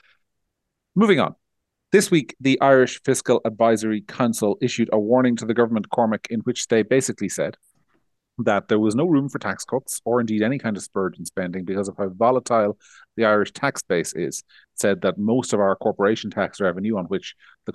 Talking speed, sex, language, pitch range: 195 wpm, male, English, 95-120 Hz